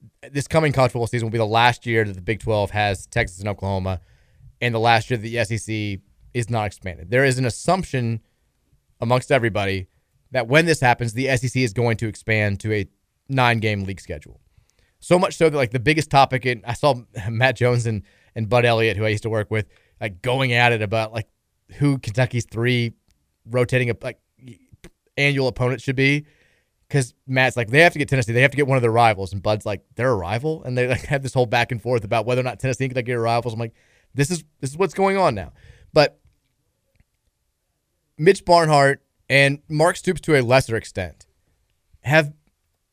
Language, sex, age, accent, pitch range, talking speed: English, male, 20-39, American, 110-135 Hz, 205 wpm